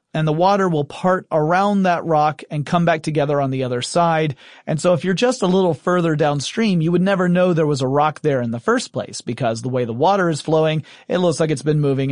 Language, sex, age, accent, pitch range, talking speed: English, male, 30-49, American, 145-180 Hz, 255 wpm